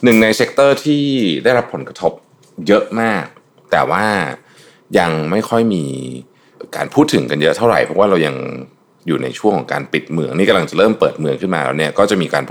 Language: Thai